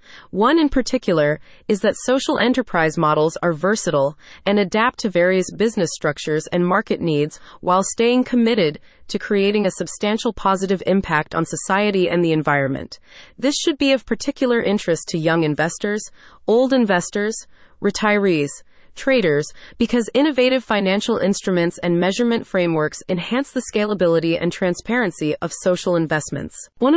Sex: female